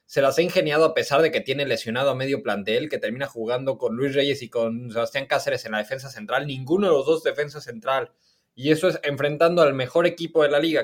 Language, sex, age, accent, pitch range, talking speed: Spanish, male, 20-39, Mexican, 130-170 Hz, 240 wpm